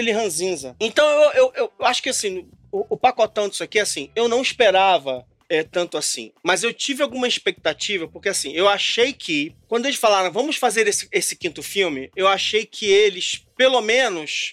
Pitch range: 180-245 Hz